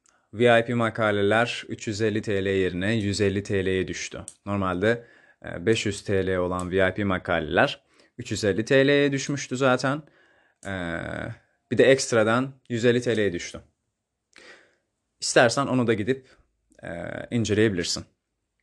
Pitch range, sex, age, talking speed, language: 105-130 Hz, male, 30-49, 95 wpm, Turkish